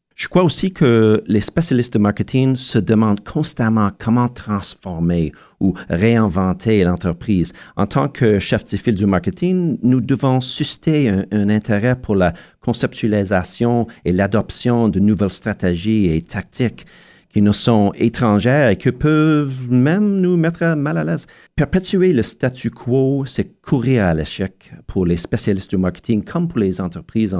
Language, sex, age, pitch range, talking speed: French, male, 40-59, 95-125 Hz, 155 wpm